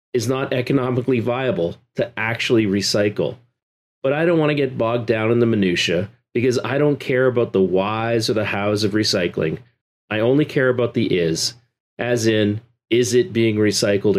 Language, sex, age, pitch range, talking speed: English, male, 40-59, 105-135 Hz, 180 wpm